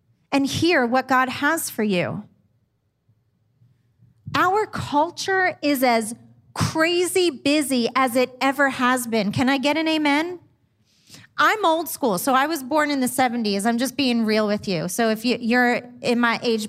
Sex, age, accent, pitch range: female, 30-49, American, 235-365 Hz